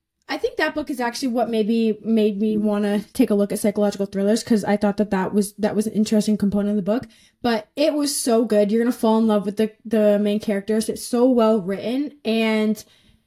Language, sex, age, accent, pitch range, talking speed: English, female, 20-39, American, 210-245 Hz, 245 wpm